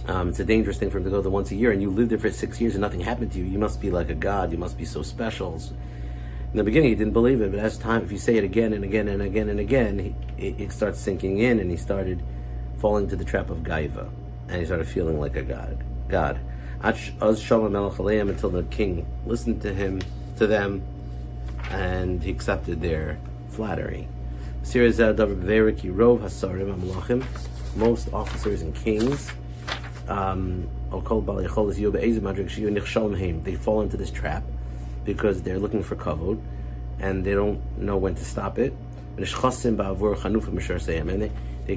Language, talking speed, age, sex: English, 170 wpm, 50-69, male